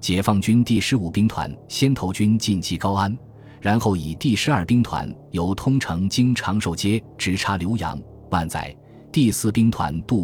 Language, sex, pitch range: Chinese, male, 85-115 Hz